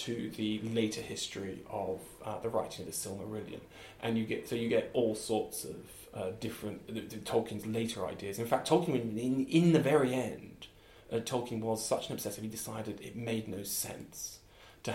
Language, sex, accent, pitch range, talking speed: English, male, British, 105-120 Hz, 195 wpm